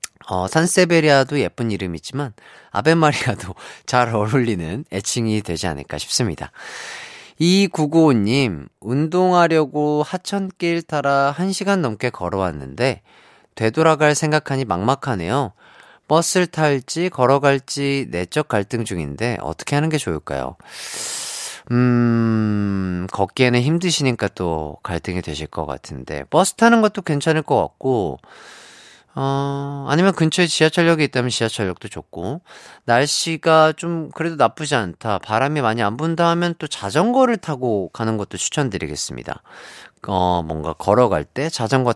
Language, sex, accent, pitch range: Korean, male, native, 100-160 Hz